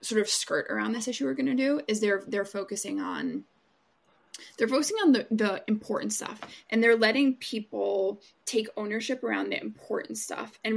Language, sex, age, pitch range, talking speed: English, female, 20-39, 210-260 Hz, 185 wpm